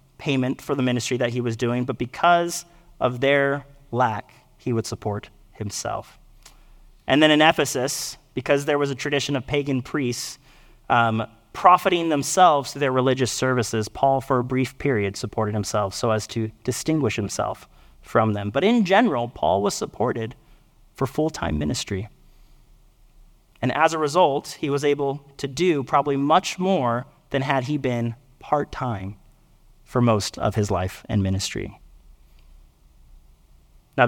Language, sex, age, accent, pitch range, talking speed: English, male, 30-49, American, 120-150 Hz, 150 wpm